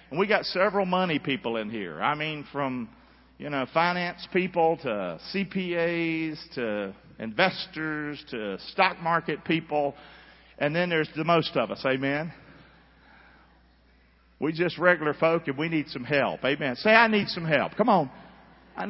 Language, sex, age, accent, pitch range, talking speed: English, male, 50-69, American, 130-185 Hz, 155 wpm